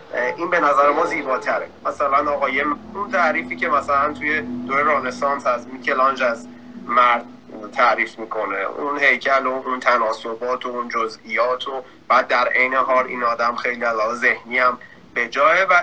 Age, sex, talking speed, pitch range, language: 30-49, male, 155 wpm, 135-195 Hz, Persian